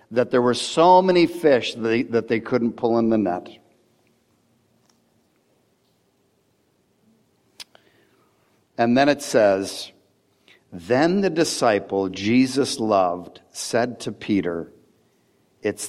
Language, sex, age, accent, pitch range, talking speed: English, male, 60-79, American, 120-155 Hz, 100 wpm